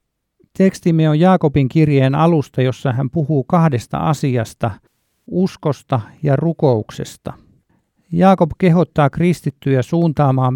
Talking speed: 95 wpm